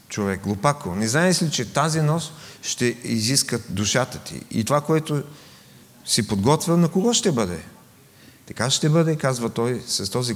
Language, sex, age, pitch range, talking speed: English, male, 40-59, 105-140 Hz, 160 wpm